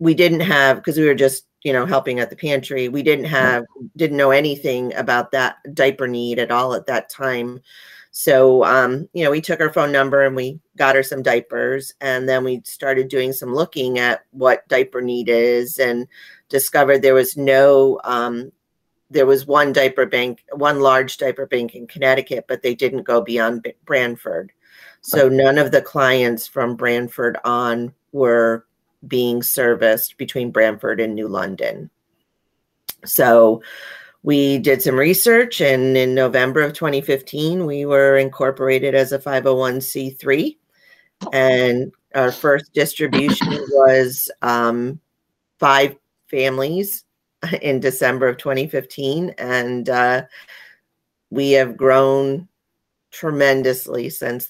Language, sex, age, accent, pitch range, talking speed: English, female, 40-59, American, 125-140 Hz, 140 wpm